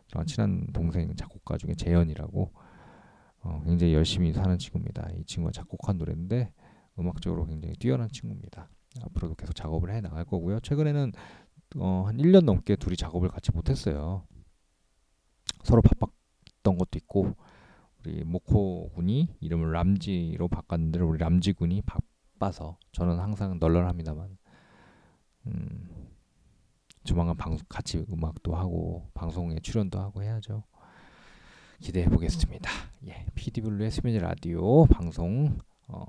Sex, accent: male, native